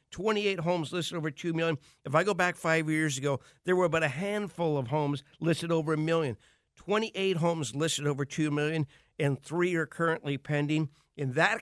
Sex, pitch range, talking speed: male, 135-165 Hz, 190 wpm